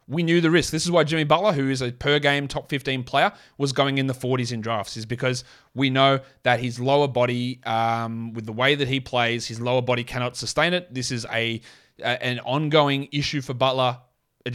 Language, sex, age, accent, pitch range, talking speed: English, male, 20-39, Australian, 120-145 Hz, 225 wpm